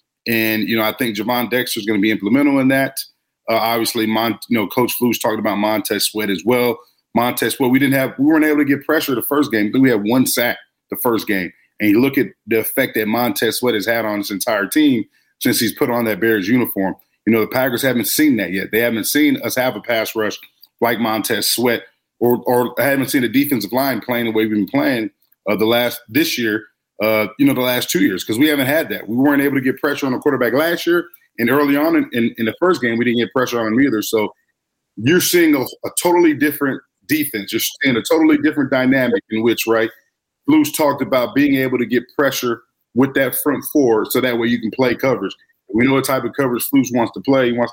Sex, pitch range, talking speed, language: male, 115-140 Hz, 250 wpm, English